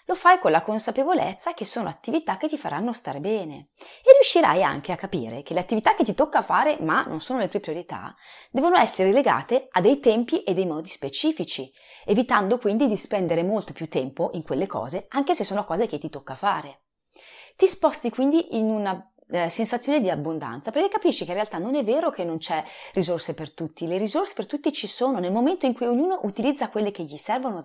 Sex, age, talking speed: female, 30-49, 215 wpm